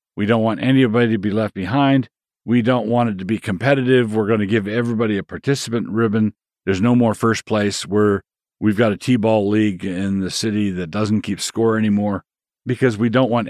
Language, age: English, 50-69